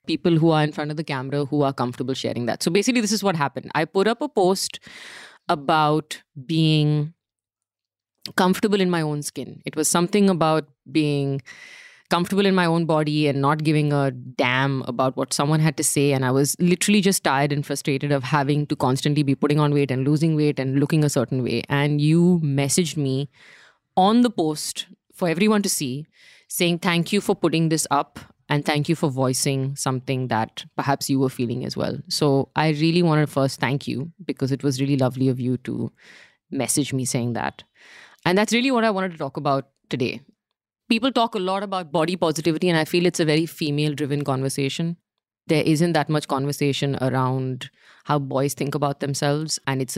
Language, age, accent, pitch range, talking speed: English, 30-49, Indian, 140-170 Hz, 200 wpm